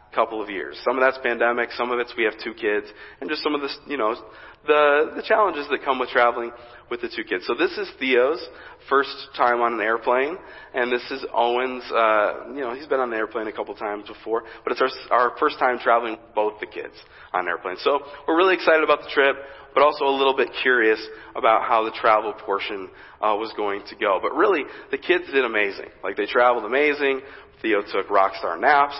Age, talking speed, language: 40-59, 220 wpm, English